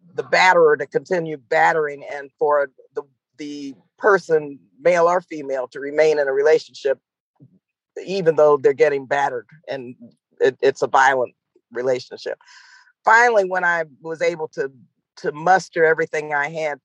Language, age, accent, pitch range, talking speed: English, 50-69, American, 165-230 Hz, 145 wpm